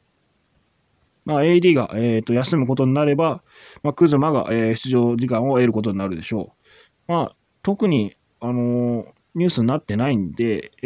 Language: Japanese